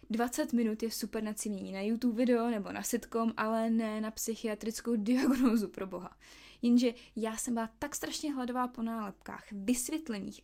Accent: native